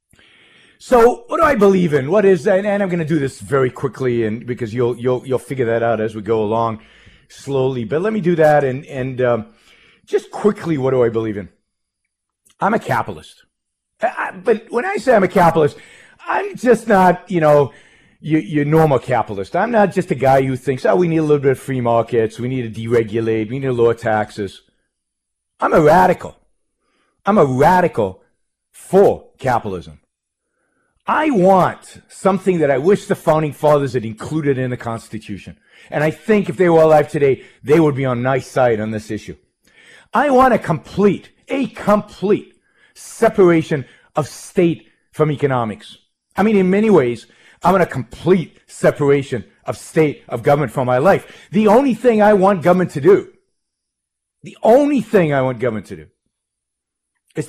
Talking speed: 180 wpm